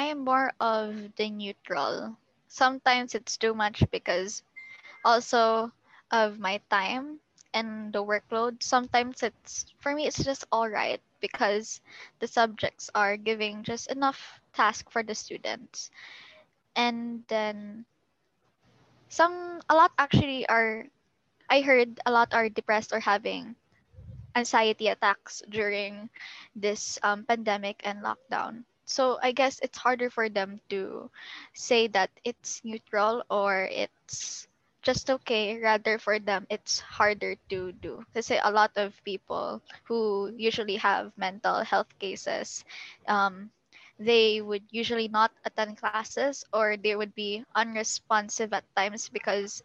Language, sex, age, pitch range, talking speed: English, female, 20-39, 205-235 Hz, 135 wpm